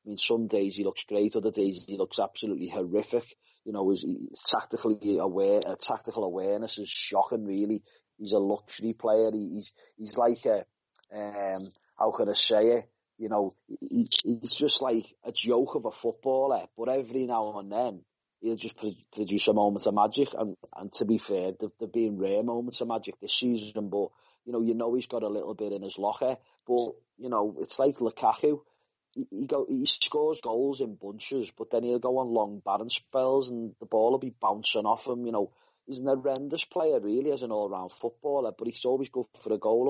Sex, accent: male, British